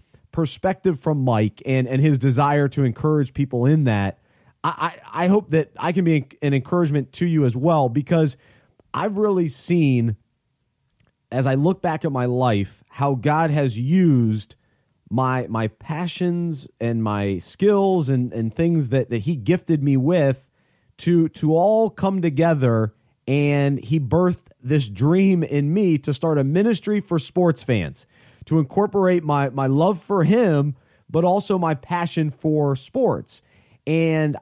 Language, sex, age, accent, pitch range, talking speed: English, male, 30-49, American, 130-170 Hz, 155 wpm